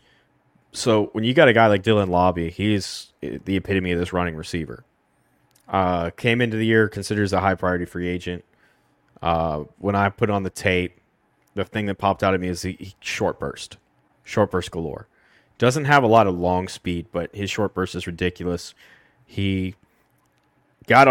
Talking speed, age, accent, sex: 180 wpm, 20-39, American, male